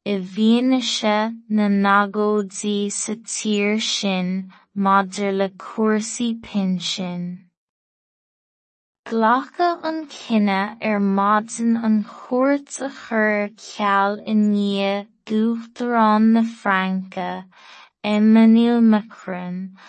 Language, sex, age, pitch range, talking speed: English, female, 20-39, 195-220 Hz, 70 wpm